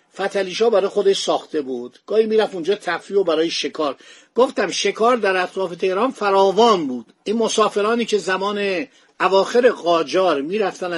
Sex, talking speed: male, 140 wpm